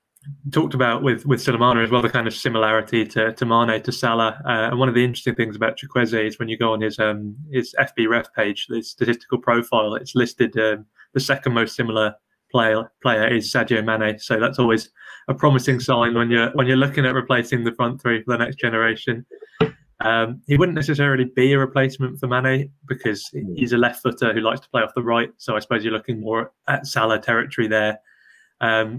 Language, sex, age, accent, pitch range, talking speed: English, male, 20-39, British, 115-130 Hz, 215 wpm